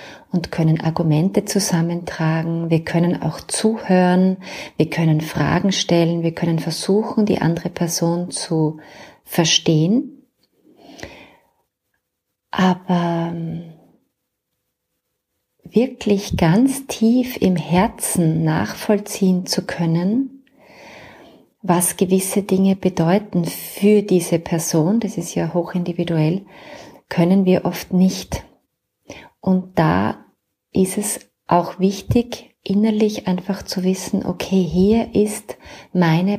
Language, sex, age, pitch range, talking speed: German, female, 30-49, 170-205 Hz, 95 wpm